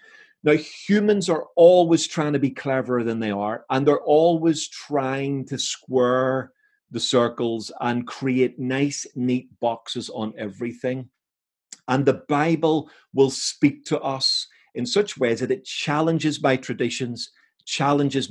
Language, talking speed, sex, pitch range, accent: English, 140 wpm, male, 120-145 Hz, British